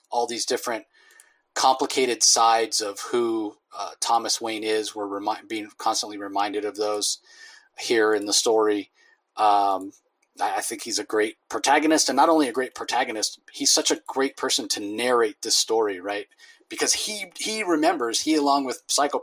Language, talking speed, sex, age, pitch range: English, 160 wpm, male, 30-49, 115-150 Hz